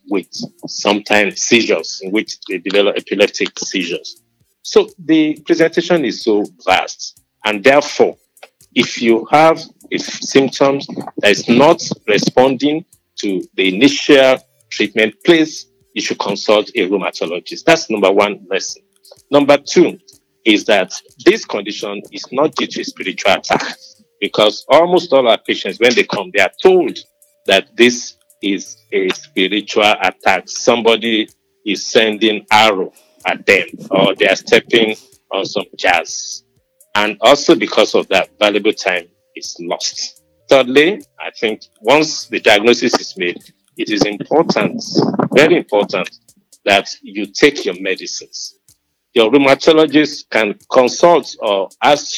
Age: 50-69